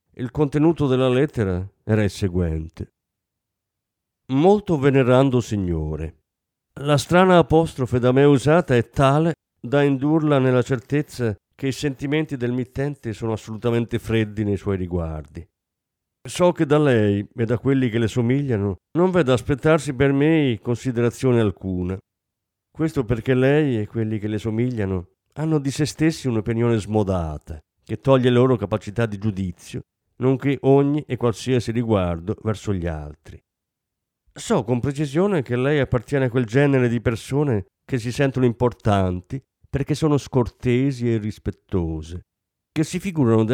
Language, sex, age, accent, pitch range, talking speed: Italian, male, 50-69, native, 105-140 Hz, 140 wpm